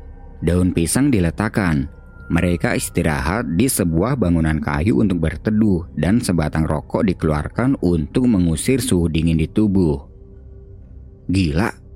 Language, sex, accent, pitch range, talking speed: Indonesian, male, native, 80-110 Hz, 110 wpm